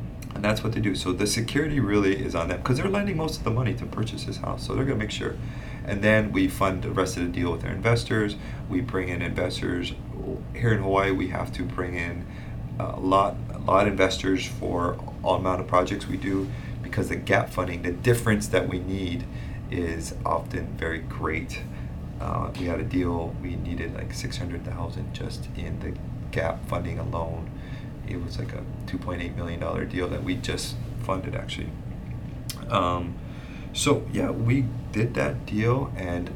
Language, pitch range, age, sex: English, 95-120 Hz, 30-49, male